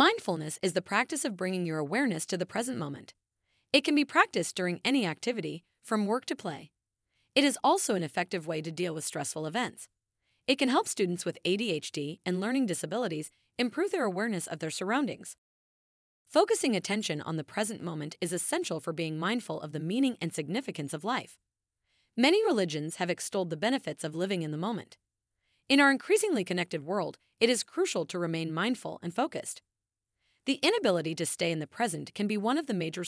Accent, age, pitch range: American, 30-49, 165-250 Hz